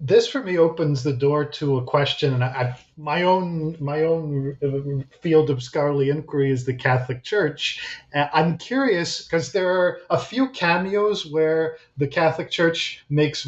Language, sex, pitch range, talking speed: English, male, 140-170 Hz, 170 wpm